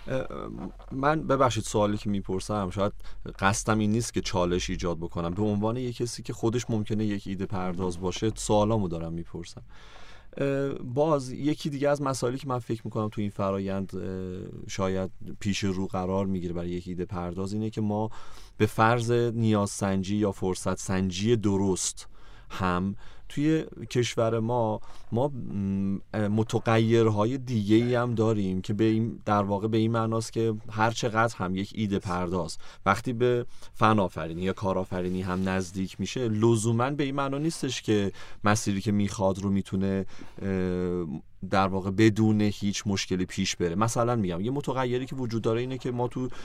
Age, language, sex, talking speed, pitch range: 30-49, Persian, male, 160 wpm, 95-120 Hz